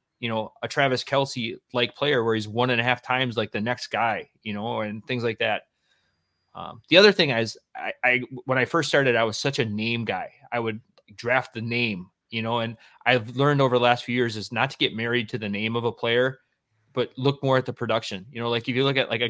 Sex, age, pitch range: male, 30-49, 115-130 Hz